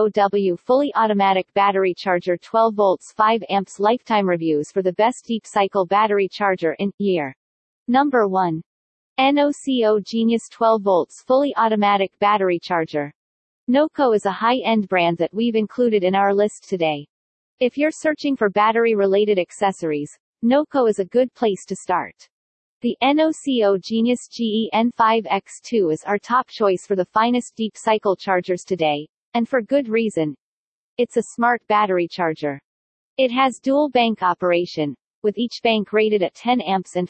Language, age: English, 40-59